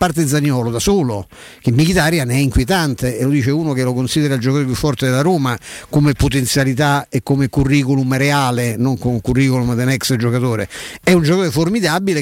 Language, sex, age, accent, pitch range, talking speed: Italian, male, 50-69, native, 130-160 Hz, 175 wpm